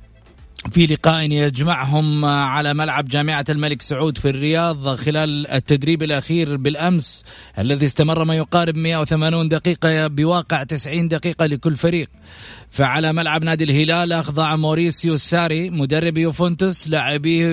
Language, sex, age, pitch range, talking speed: Arabic, male, 30-49, 150-175 Hz, 120 wpm